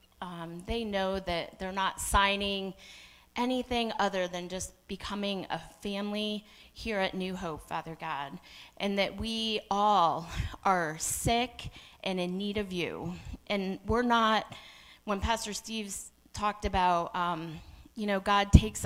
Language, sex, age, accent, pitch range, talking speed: English, female, 30-49, American, 175-205 Hz, 140 wpm